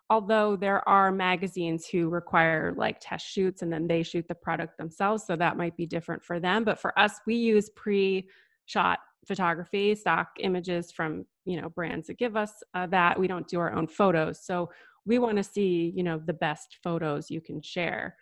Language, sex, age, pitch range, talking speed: English, female, 20-39, 170-215 Hz, 200 wpm